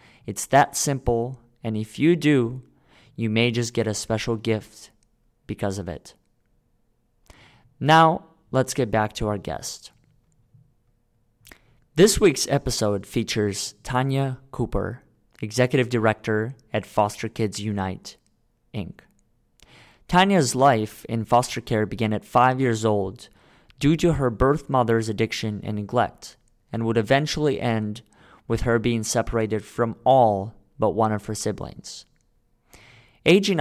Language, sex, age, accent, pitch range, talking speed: English, male, 30-49, American, 105-125 Hz, 125 wpm